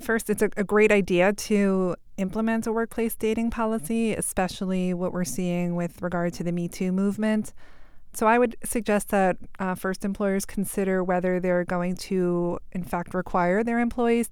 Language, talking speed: English, 170 wpm